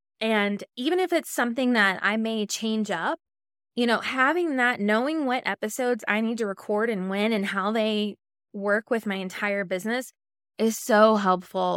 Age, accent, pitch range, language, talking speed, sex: 20-39, American, 195-235 Hz, English, 175 wpm, female